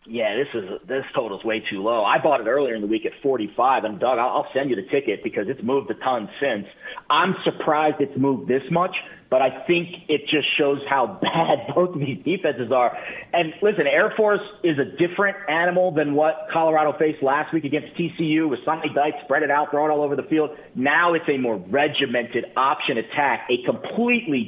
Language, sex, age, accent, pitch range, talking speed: English, male, 40-59, American, 135-175 Hz, 215 wpm